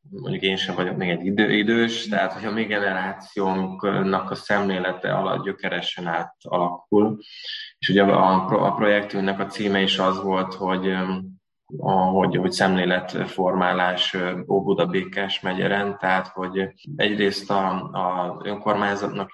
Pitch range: 90-100 Hz